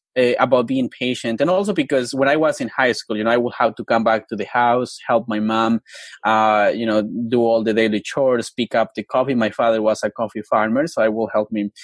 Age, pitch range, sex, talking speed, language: 20-39, 110-140 Hz, male, 255 wpm, English